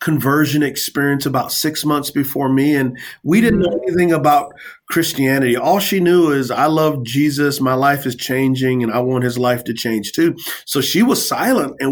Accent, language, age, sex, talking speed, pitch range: American, English, 30-49, male, 190 wpm, 120-150 Hz